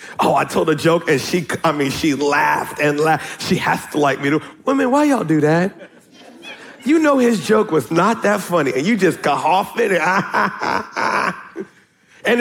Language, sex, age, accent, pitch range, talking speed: English, male, 40-59, American, 170-245 Hz, 190 wpm